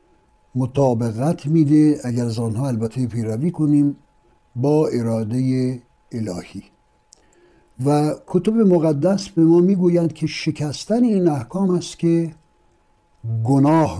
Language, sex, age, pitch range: Persian, male, 60-79, 120-170 Hz